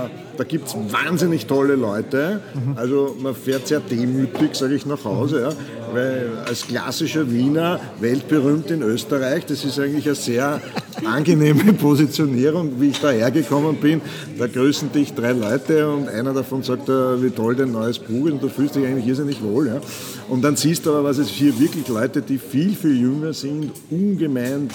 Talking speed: 180 wpm